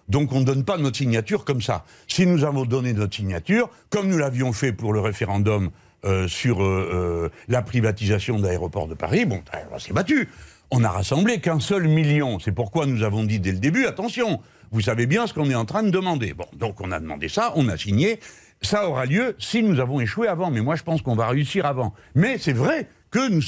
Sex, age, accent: male, 60-79, French